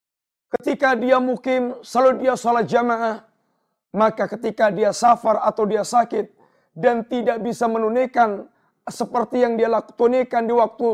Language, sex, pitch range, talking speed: Indonesian, male, 220-255 Hz, 130 wpm